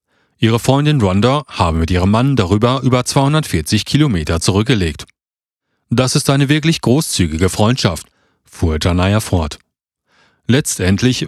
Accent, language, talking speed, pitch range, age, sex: German, German, 115 wpm, 95-135 Hz, 40-59, male